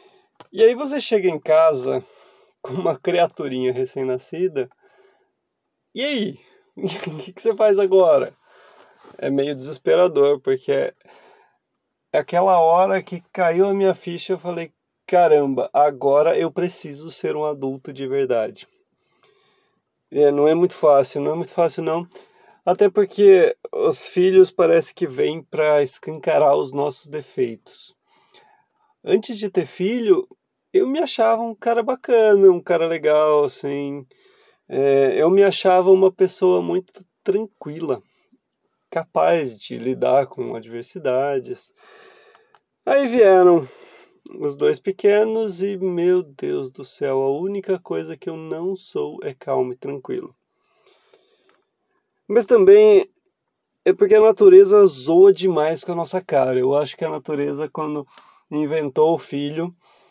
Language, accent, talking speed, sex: Portuguese, Brazilian, 130 wpm, male